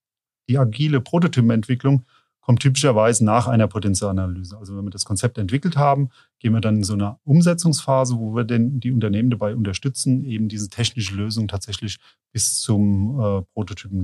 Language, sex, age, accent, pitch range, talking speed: German, male, 30-49, German, 110-130 Hz, 160 wpm